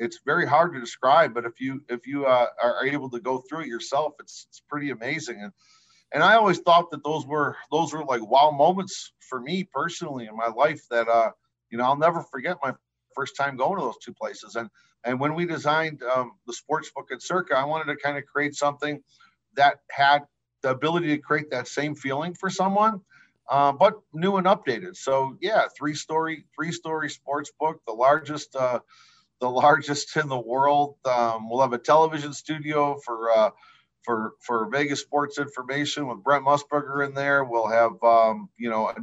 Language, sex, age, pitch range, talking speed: English, male, 50-69, 125-150 Hz, 200 wpm